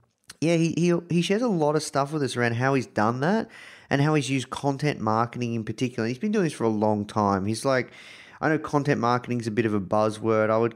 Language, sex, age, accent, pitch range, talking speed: English, male, 30-49, Australian, 100-120 Hz, 255 wpm